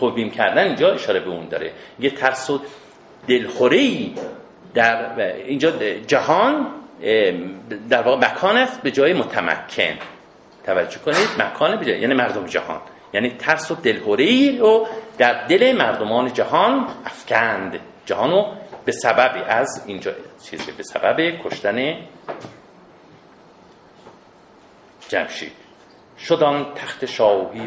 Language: Persian